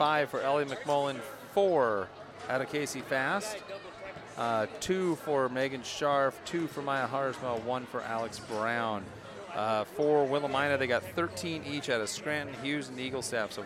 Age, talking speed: 40-59, 165 wpm